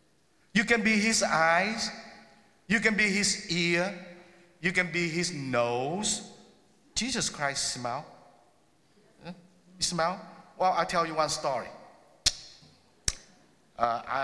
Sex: male